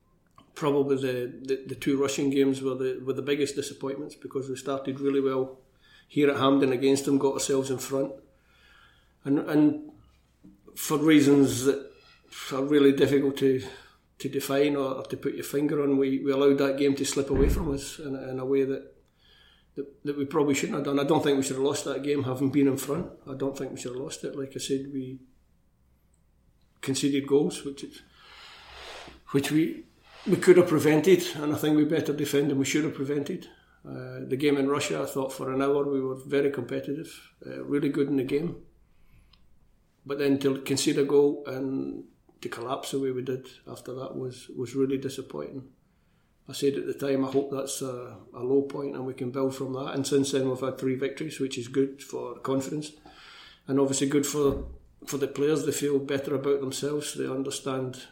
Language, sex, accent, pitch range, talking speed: English, male, British, 130-140 Hz, 200 wpm